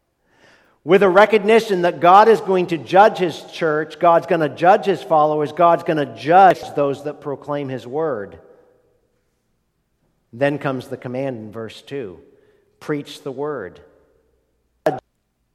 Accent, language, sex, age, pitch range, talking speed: American, English, male, 50-69, 120-150 Hz, 140 wpm